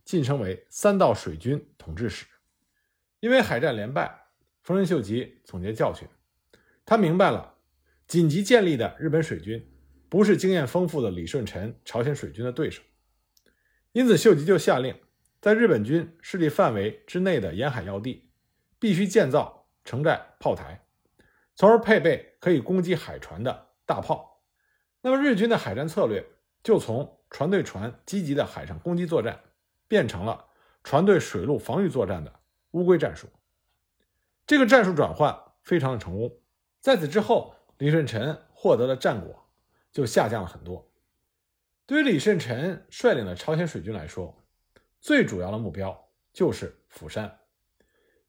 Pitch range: 115-190 Hz